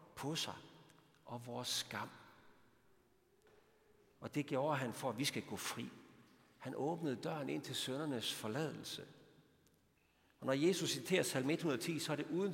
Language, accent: Danish, native